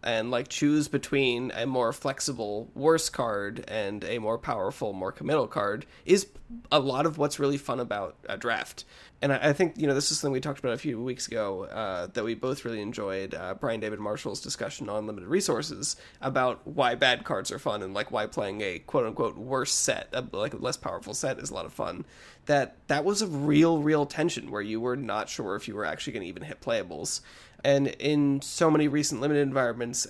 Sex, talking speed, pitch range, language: male, 215 wpm, 120-150 Hz, English